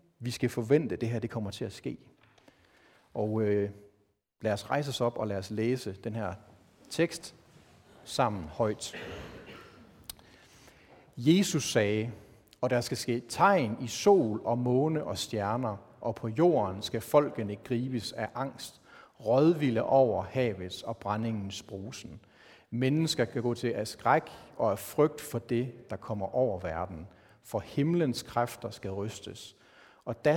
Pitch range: 105-130 Hz